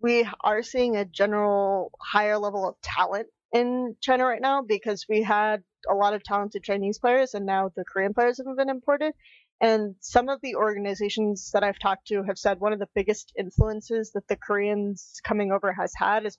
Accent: American